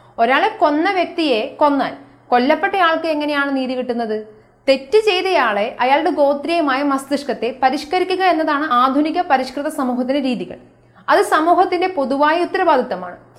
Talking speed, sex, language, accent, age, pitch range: 105 wpm, female, Malayalam, native, 30-49, 235-315 Hz